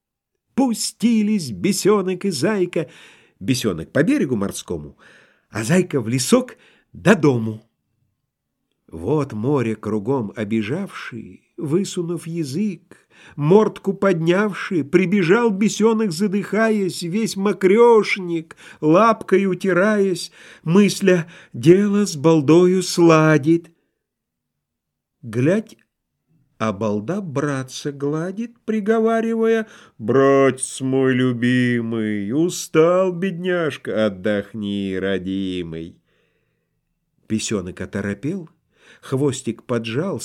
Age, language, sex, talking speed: 50-69, Russian, male, 75 wpm